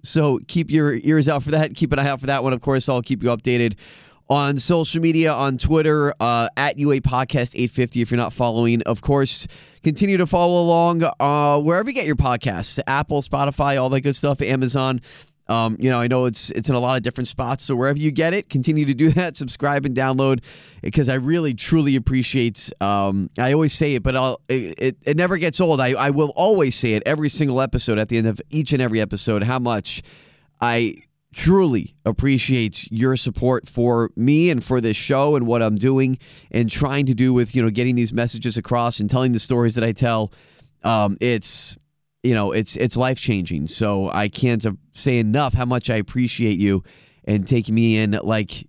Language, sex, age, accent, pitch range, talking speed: English, male, 20-39, American, 115-145 Hz, 205 wpm